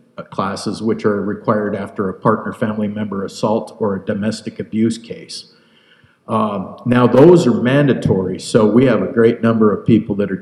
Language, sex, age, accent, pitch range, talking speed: English, male, 50-69, American, 105-125 Hz, 175 wpm